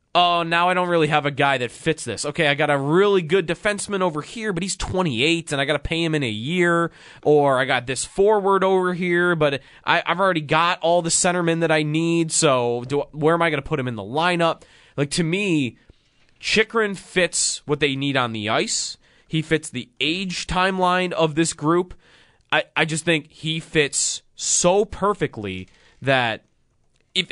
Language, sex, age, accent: English, male, 20-39, American